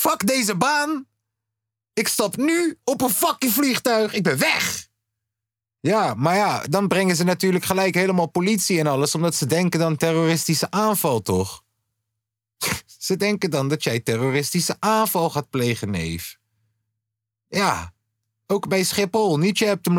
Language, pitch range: Dutch, 110-170 Hz